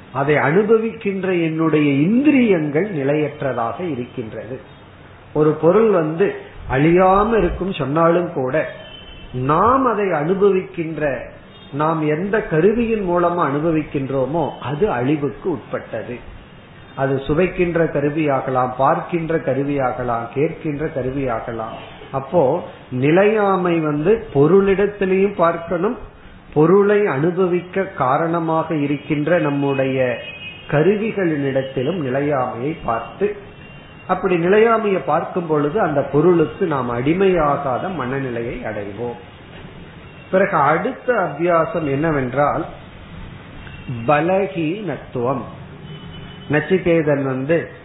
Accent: native